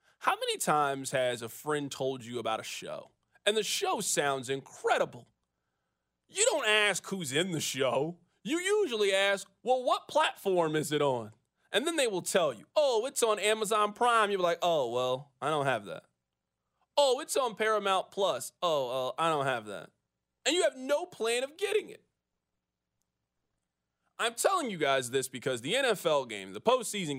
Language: English